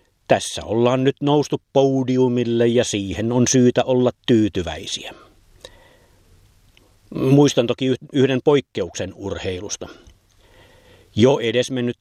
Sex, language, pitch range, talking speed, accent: male, Finnish, 100-130 Hz, 90 wpm, native